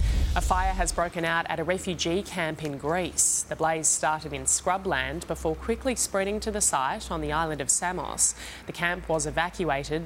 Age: 10-29